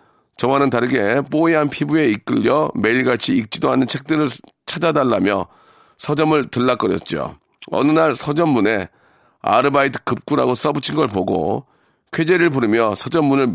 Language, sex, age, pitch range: Korean, male, 40-59, 125-155 Hz